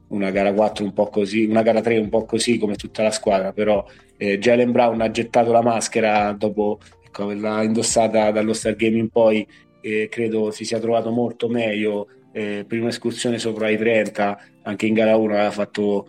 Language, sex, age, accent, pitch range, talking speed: Italian, male, 20-39, native, 100-110 Hz, 190 wpm